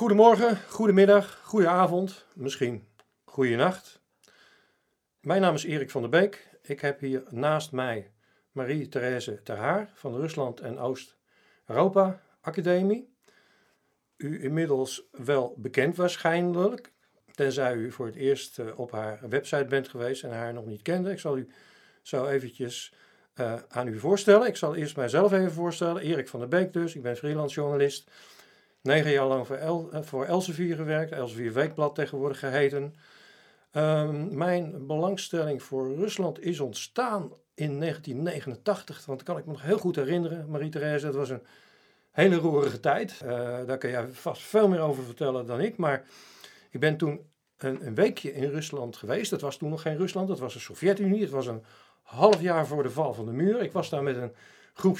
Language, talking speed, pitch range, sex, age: Dutch, 170 wpm, 130-180 Hz, male, 50-69